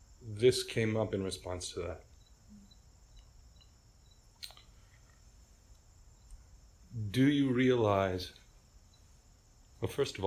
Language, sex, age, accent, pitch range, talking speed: English, male, 40-59, American, 95-125 Hz, 75 wpm